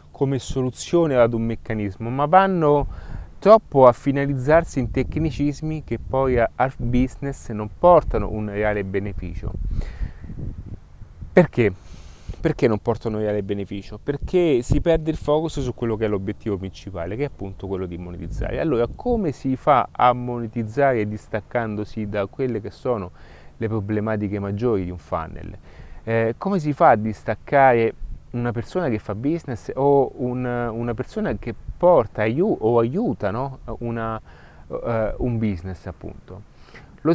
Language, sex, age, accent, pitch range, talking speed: Italian, male, 30-49, native, 105-135 Hz, 145 wpm